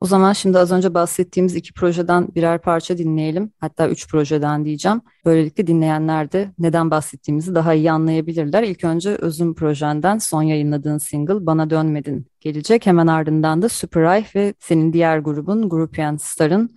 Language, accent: Turkish, native